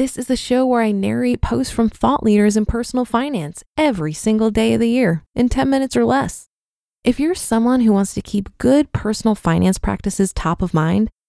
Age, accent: 20-39, American